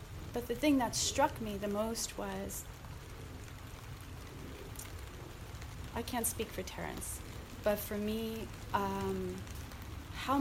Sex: female